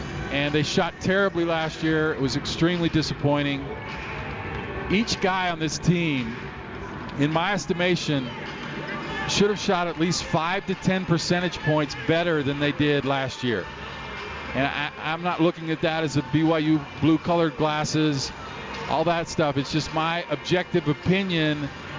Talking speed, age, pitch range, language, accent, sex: 145 wpm, 40-59, 145-180 Hz, English, American, male